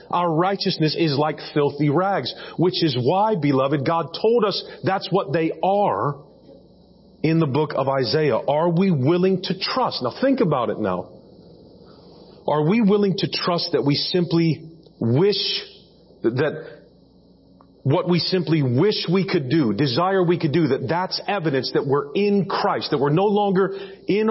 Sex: male